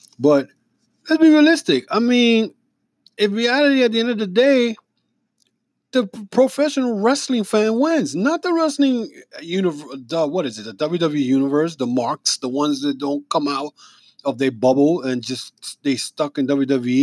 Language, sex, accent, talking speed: English, male, American, 160 wpm